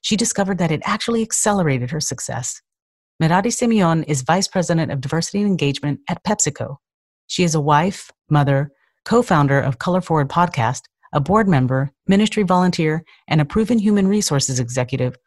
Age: 40-59